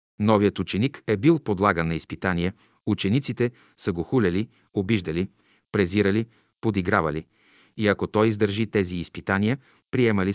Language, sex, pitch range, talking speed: Bulgarian, male, 95-125 Hz, 120 wpm